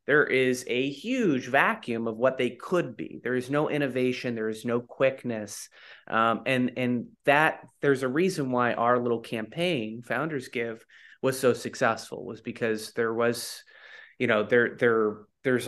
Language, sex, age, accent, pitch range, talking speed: English, male, 30-49, American, 115-135 Hz, 165 wpm